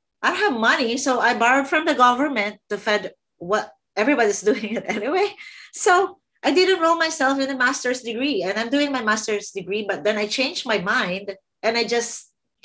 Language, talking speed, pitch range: English, 190 wpm, 195-255 Hz